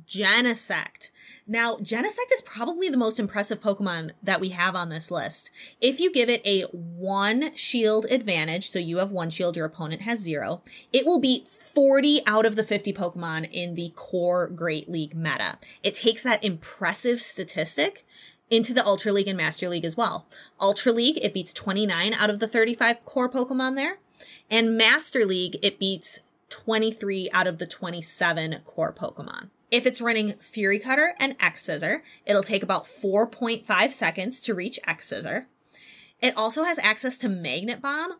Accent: American